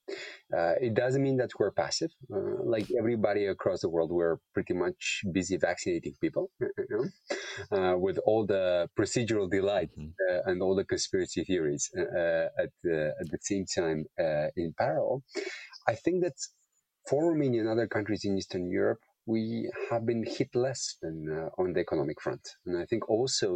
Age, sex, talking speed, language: 30-49, male, 175 wpm, English